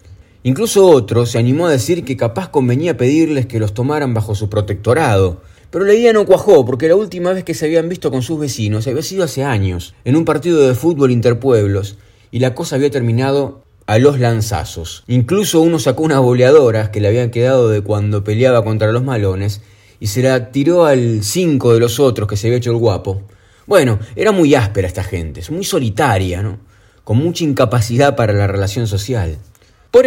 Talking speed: 195 wpm